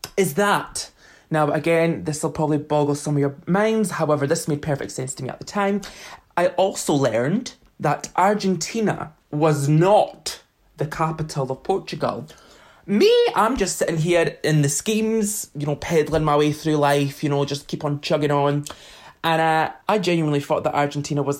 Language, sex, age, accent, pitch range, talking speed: English, male, 20-39, British, 145-180 Hz, 175 wpm